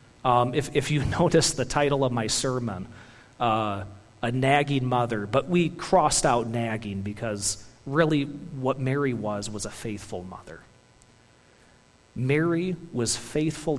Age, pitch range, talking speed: 40-59, 115-160 Hz, 135 wpm